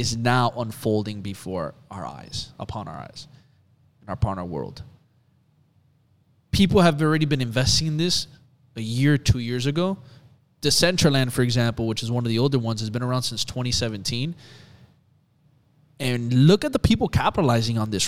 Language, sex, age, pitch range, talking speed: English, male, 20-39, 120-145 Hz, 160 wpm